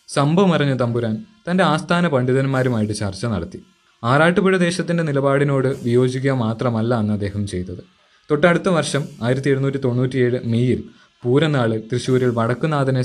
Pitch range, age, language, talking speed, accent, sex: 115-155 Hz, 20-39, Malayalam, 115 wpm, native, male